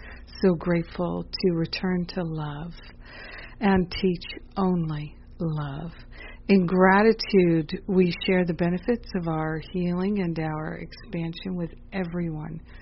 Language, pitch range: English, 160-190 Hz